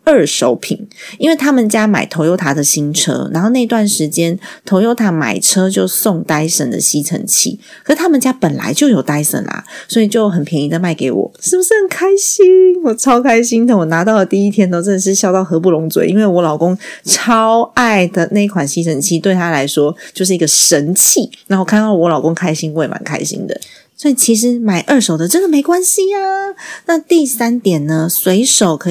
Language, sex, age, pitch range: Chinese, female, 30-49, 160-230 Hz